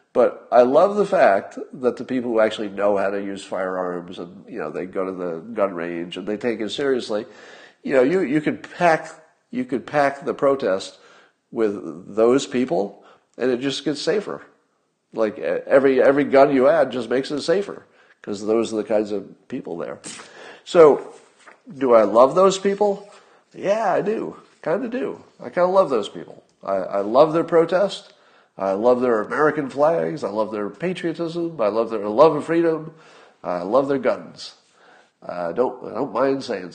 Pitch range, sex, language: 110-165 Hz, male, English